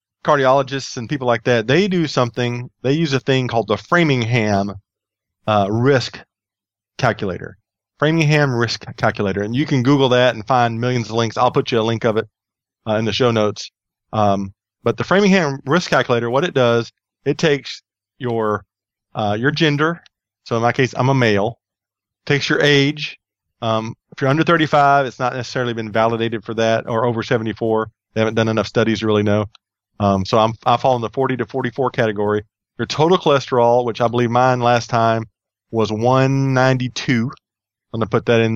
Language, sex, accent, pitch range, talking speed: English, male, American, 110-130 Hz, 185 wpm